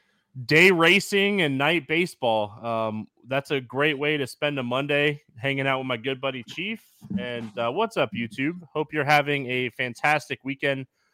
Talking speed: 170 wpm